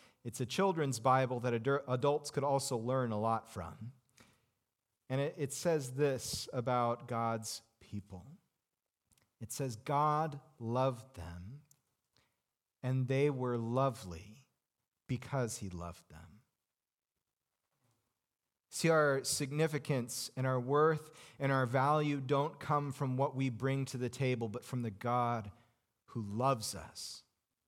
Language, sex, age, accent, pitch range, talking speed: English, male, 40-59, American, 115-170 Hz, 125 wpm